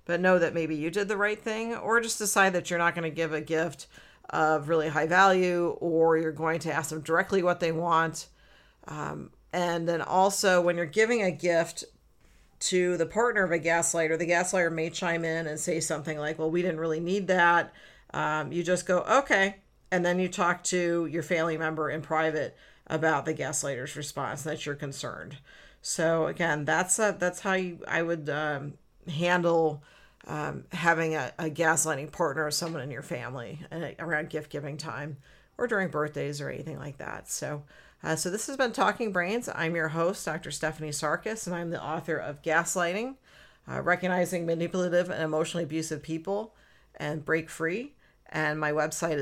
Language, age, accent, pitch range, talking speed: English, 50-69, American, 155-180 Hz, 185 wpm